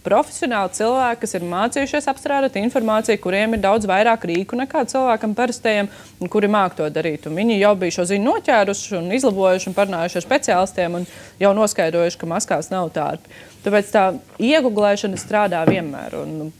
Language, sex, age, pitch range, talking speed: English, female, 20-39, 175-225 Hz, 160 wpm